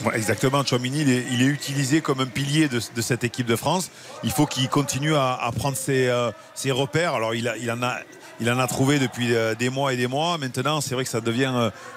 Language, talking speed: French, 240 wpm